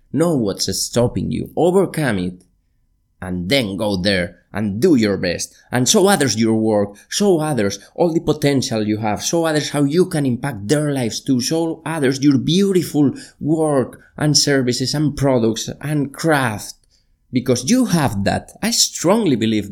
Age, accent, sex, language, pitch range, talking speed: 30-49, Spanish, male, English, 110-165 Hz, 160 wpm